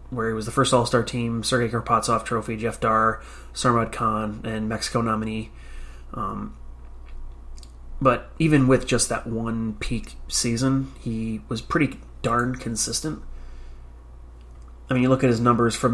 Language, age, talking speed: English, 30-49, 145 wpm